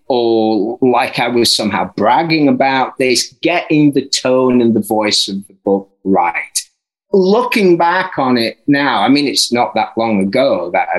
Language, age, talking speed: English, 30-49, 170 wpm